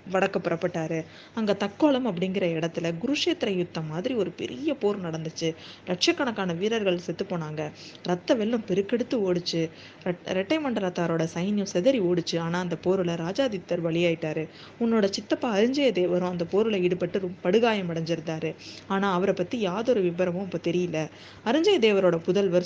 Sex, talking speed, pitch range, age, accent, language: female, 130 wpm, 170-215 Hz, 20-39, native, Tamil